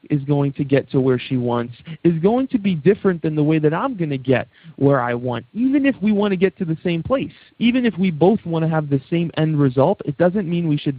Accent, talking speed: American, 275 wpm